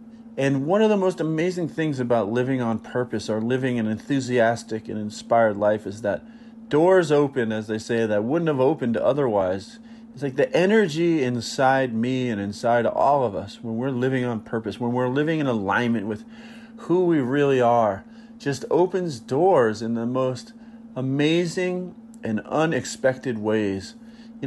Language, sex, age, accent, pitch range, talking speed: English, male, 40-59, American, 115-180 Hz, 165 wpm